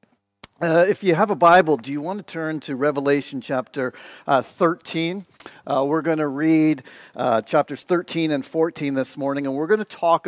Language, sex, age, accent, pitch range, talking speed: English, male, 50-69, American, 135-165 Hz, 185 wpm